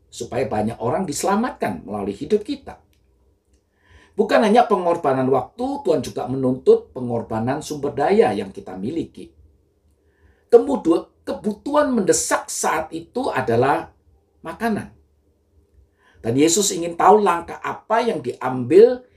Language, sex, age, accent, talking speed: Indonesian, male, 50-69, native, 110 wpm